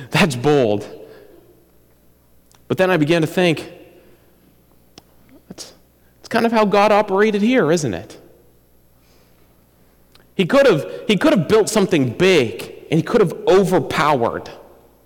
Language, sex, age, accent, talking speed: English, male, 40-59, American, 130 wpm